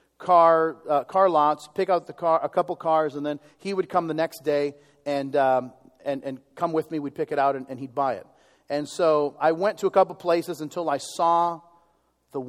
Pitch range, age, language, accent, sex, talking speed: 140-175 Hz, 40-59, English, American, male, 225 wpm